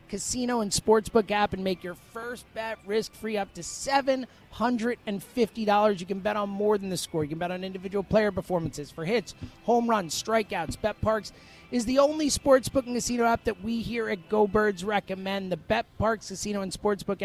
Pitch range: 195-230 Hz